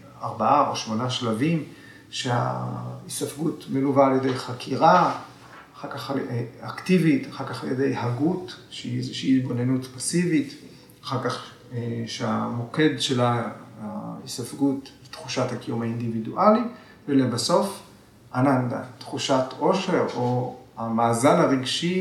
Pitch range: 115-155 Hz